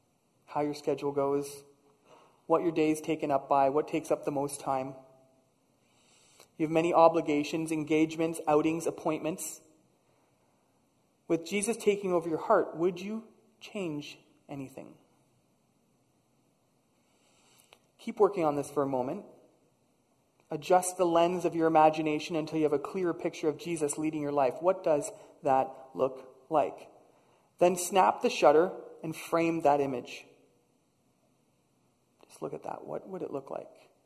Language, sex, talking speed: English, male, 140 wpm